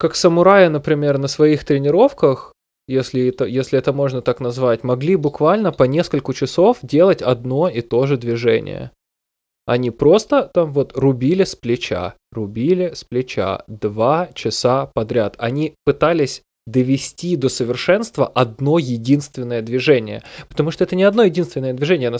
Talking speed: 140 wpm